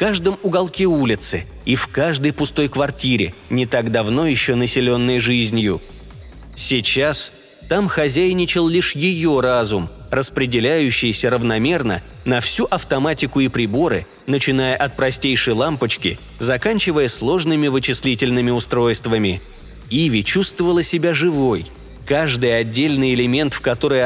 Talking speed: 110 wpm